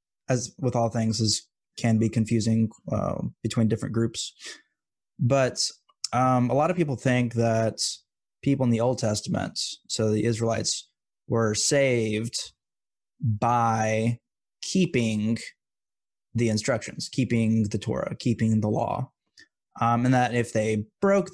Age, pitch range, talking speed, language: 20-39, 110-130 Hz, 130 wpm, English